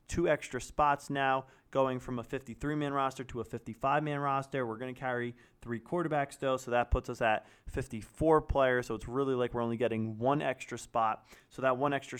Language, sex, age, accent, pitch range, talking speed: English, male, 30-49, American, 110-130 Hz, 200 wpm